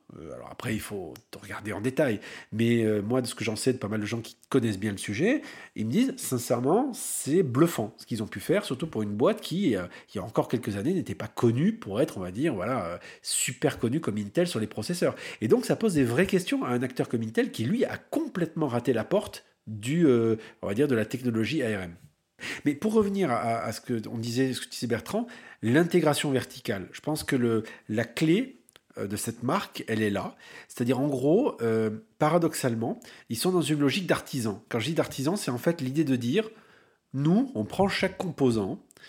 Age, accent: 50-69, French